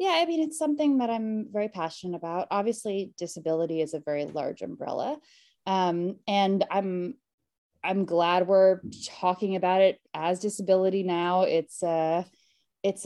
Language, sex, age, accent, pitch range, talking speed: English, female, 20-39, American, 180-225 Hz, 145 wpm